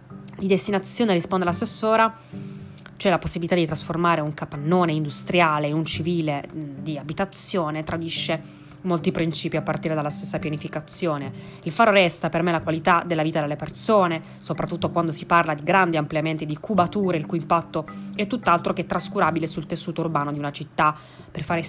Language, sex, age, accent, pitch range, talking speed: Italian, female, 20-39, native, 155-190 Hz, 165 wpm